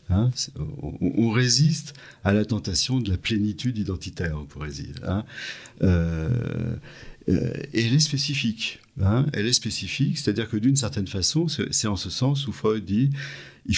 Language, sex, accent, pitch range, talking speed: French, male, French, 90-120 Hz, 165 wpm